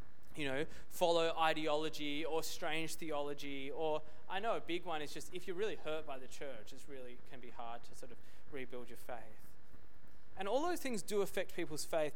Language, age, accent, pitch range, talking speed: English, 20-39, Australian, 150-205 Hz, 200 wpm